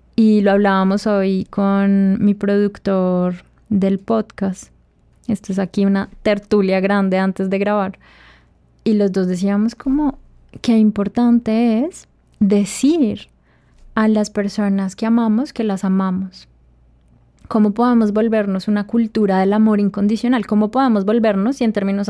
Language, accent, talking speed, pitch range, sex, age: Spanish, Colombian, 135 wpm, 195-230 Hz, female, 20-39